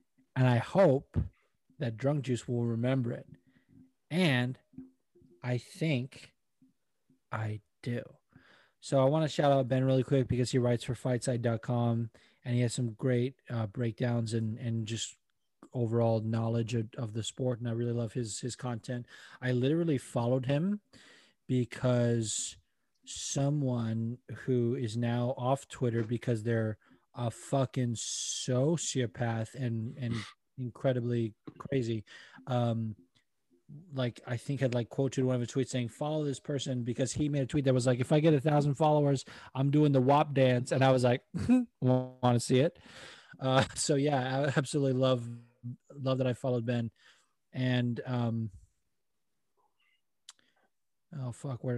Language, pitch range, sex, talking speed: English, 120-135 Hz, male, 150 wpm